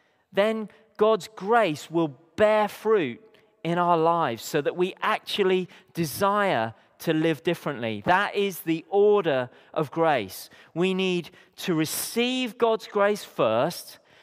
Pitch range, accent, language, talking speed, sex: 140-200 Hz, British, English, 125 wpm, male